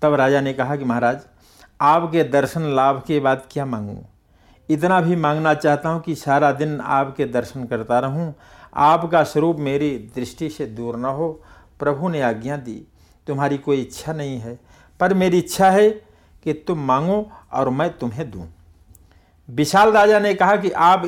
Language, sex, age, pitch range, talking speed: Hindi, male, 60-79, 115-155 Hz, 170 wpm